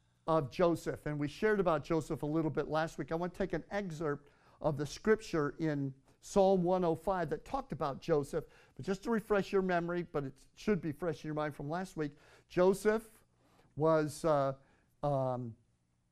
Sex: male